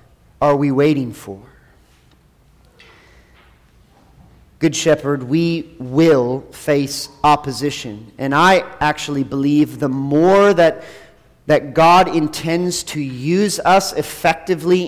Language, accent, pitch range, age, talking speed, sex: English, American, 145-200 Hz, 40-59, 95 wpm, male